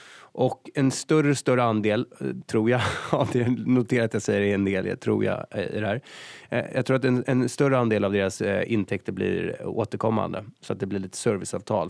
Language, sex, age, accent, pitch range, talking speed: Swedish, male, 20-39, native, 100-135 Hz, 175 wpm